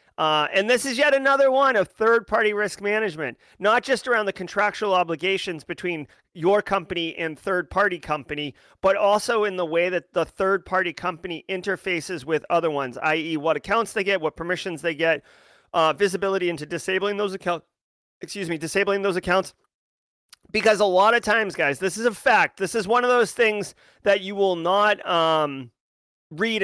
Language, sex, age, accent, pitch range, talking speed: English, male, 30-49, American, 160-205 Hz, 185 wpm